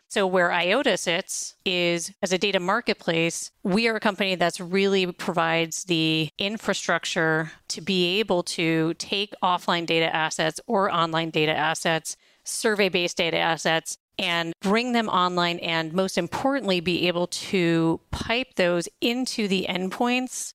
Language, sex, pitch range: English, female, 170-205 Hz